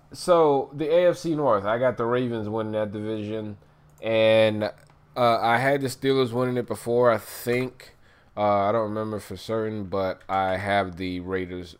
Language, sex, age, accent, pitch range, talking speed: English, male, 20-39, American, 95-120 Hz, 170 wpm